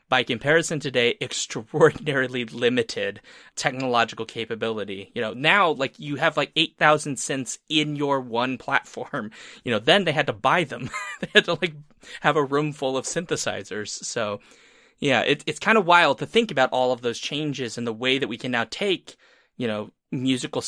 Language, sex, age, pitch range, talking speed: English, male, 20-39, 120-155 Hz, 185 wpm